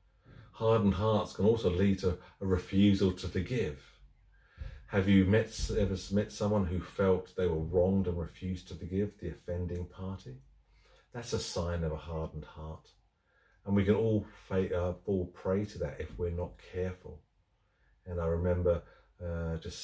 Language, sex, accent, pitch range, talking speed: English, male, British, 85-95 Hz, 155 wpm